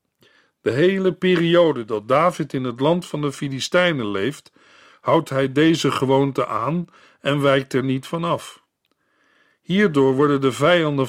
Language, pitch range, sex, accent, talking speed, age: Dutch, 130-170 Hz, male, Dutch, 140 wpm, 50-69